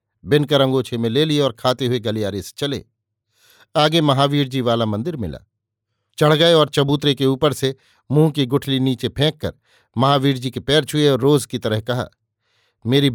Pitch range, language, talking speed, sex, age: 115-140 Hz, Hindi, 185 wpm, male, 50-69